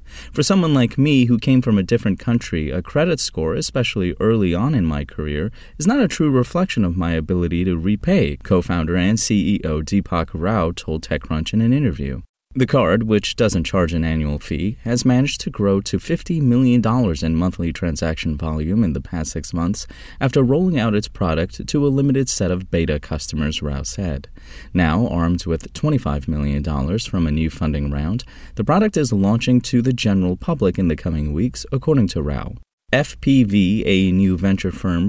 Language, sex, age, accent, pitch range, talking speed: English, male, 30-49, American, 80-115 Hz, 185 wpm